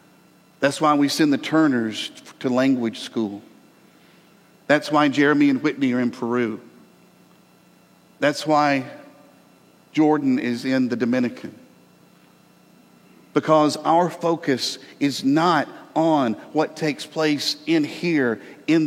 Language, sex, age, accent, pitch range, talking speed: English, male, 50-69, American, 145-215 Hz, 115 wpm